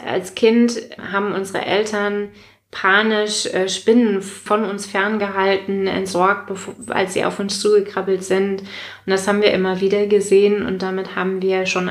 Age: 20-39